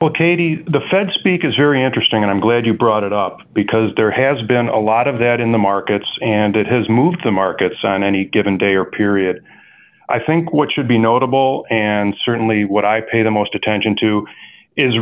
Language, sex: English, male